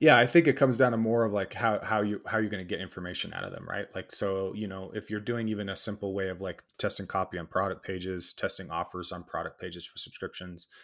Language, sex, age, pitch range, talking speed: English, male, 20-39, 90-105 Hz, 270 wpm